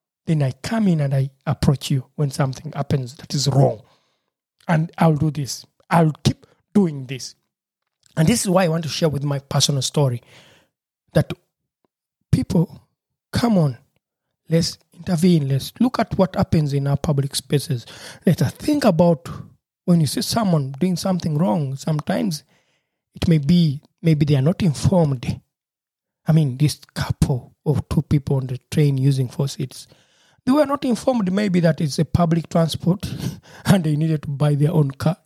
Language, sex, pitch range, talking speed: English, male, 140-170 Hz, 165 wpm